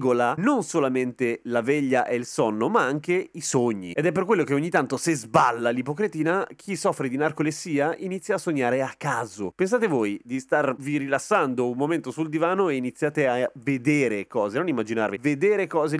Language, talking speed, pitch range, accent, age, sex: Italian, 180 wpm, 130-185 Hz, native, 30-49, male